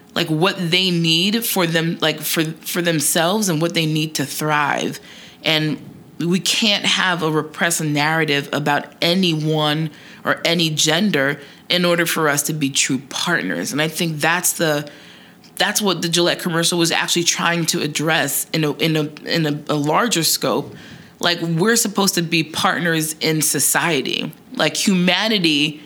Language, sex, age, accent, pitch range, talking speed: English, female, 20-39, American, 155-180 Hz, 160 wpm